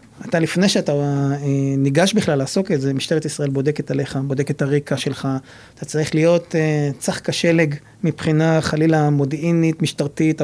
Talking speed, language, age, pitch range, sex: 140 wpm, Hebrew, 30-49, 145-180 Hz, male